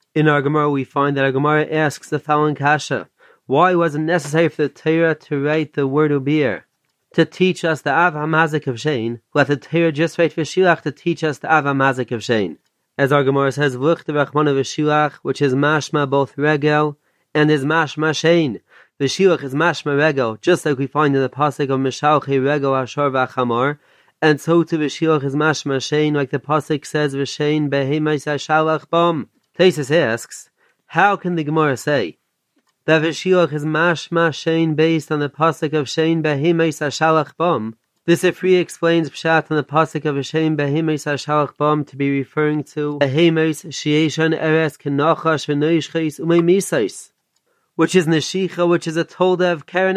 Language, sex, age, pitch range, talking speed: English, male, 30-49, 145-165 Hz, 175 wpm